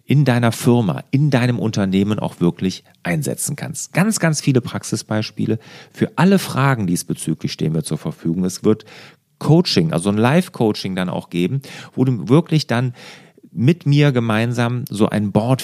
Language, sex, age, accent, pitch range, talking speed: German, male, 40-59, German, 105-155 Hz, 155 wpm